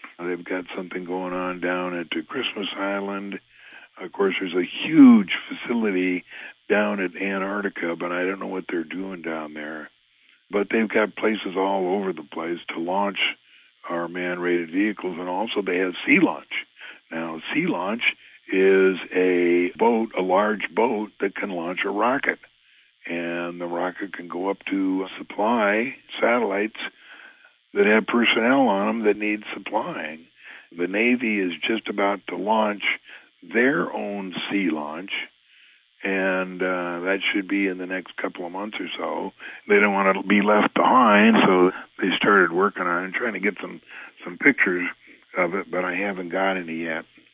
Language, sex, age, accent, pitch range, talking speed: English, male, 60-79, American, 90-100 Hz, 160 wpm